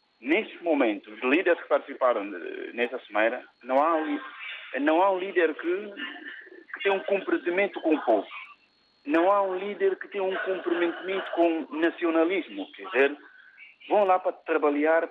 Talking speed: 155 wpm